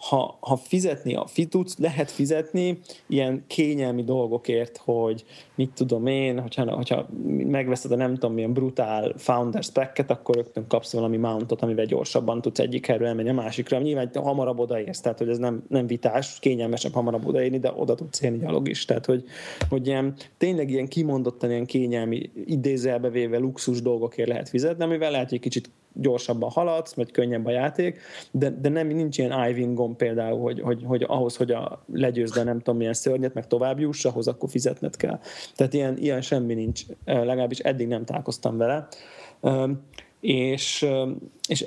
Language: Hungarian